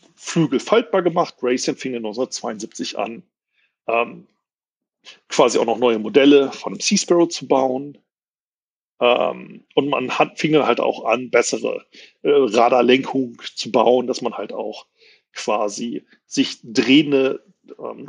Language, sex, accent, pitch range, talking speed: German, male, German, 130-215 Hz, 135 wpm